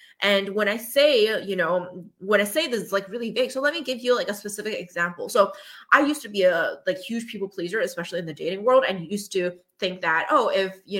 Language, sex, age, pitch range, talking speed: English, female, 20-39, 175-230 Hz, 250 wpm